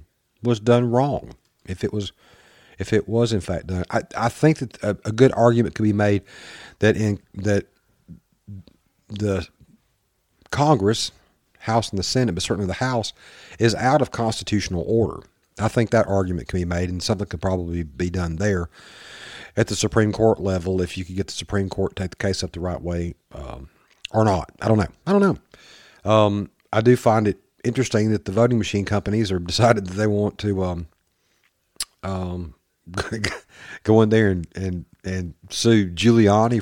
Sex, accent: male, American